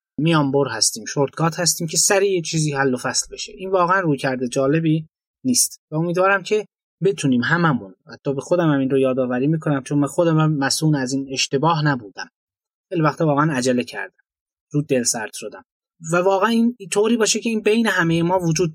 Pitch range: 140-180 Hz